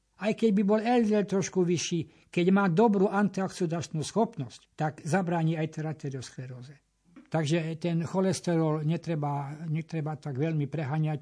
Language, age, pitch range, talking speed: Slovak, 60-79, 145-180 Hz, 130 wpm